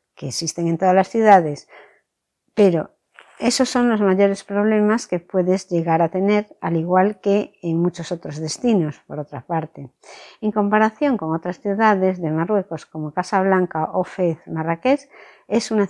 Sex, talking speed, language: female, 155 wpm, Spanish